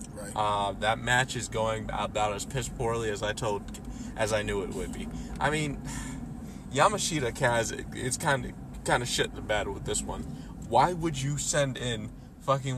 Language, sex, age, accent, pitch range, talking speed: English, male, 20-39, American, 105-130 Hz, 190 wpm